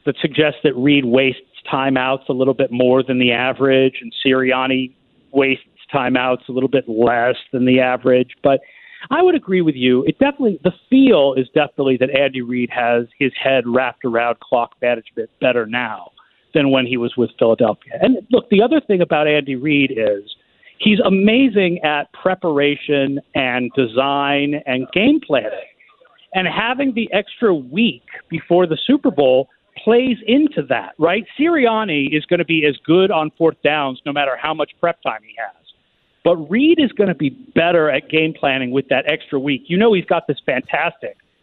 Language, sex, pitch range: English, male, 130-185 Hz